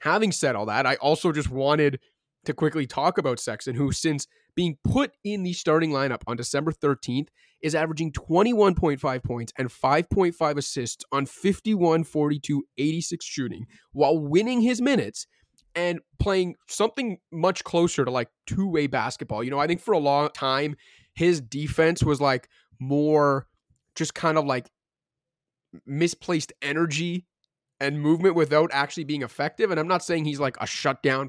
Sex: male